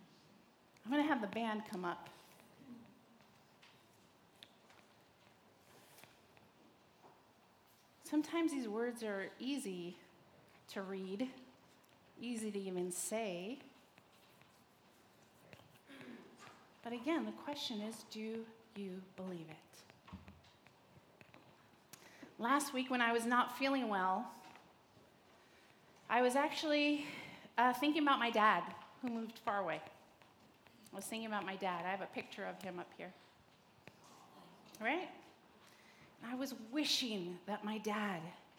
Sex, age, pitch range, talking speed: female, 40-59, 210-275 Hz, 105 wpm